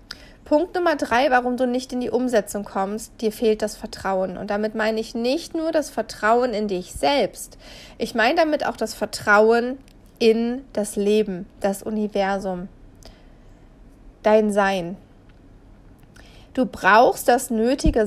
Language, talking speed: German, 140 wpm